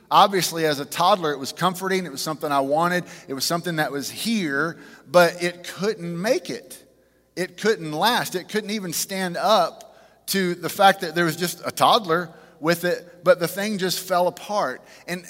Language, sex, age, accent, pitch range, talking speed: English, male, 30-49, American, 145-185 Hz, 190 wpm